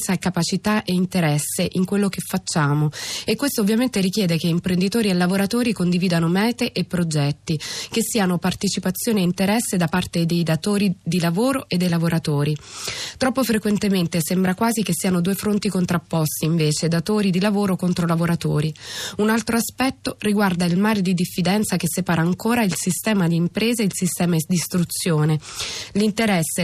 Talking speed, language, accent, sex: 160 wpm, Italian, native, female